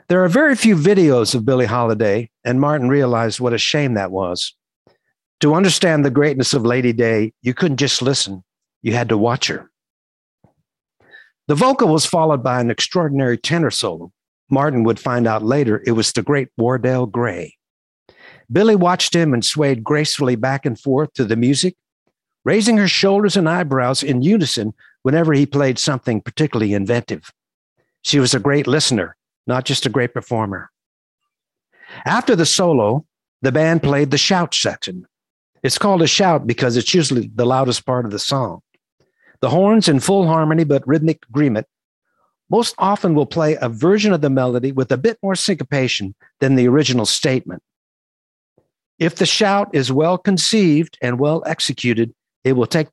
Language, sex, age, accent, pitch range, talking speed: English, male, 60-79, American, 120-165 Hz, 165 wpm